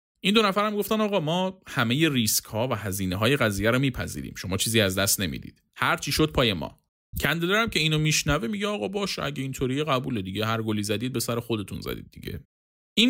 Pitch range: 105-150 Hz